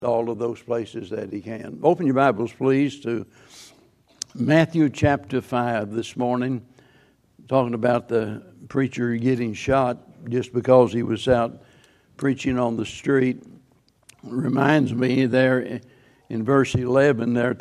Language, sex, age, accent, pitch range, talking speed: English, male, 60-79, American, 120-140 Hz, 135 wpm